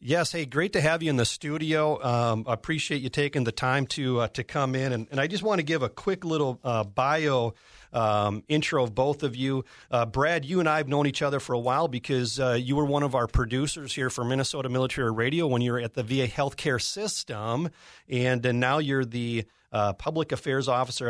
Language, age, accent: English, 40-59, American